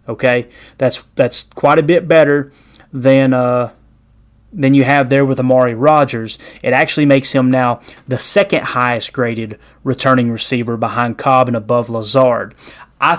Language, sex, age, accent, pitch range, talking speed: English, male, 30-49, American, 125-145 Hz, 150 wpm